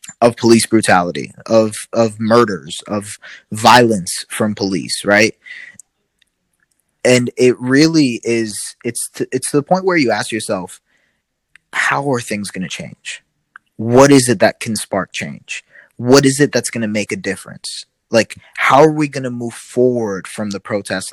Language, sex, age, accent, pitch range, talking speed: English, male, 20-39, American, 110-130 Hz, 160 wpm